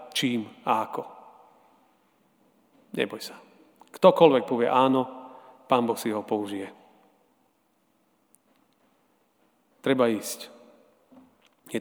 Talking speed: 80 wpm